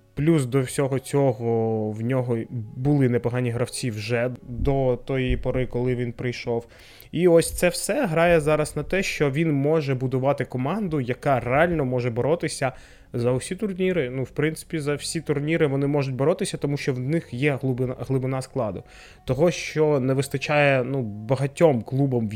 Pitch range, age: 125-150 Hz, 20-39